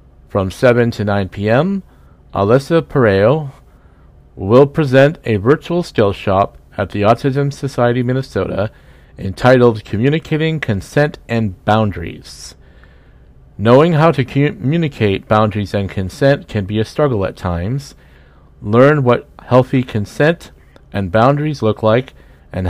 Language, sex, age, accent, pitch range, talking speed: English, male, 50-69, American, 95-135 Hz, 120 wpm